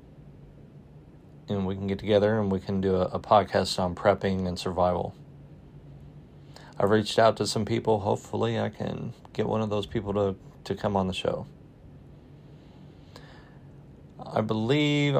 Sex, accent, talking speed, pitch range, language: male, American, 150 wpm, 95-110 Hz, English